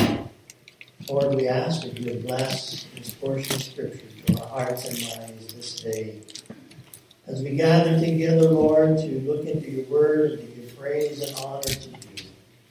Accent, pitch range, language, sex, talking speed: American, 125-155 Hz, English, male, 165 wpm